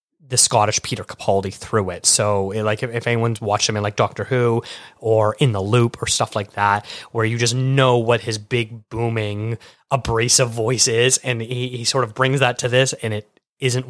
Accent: American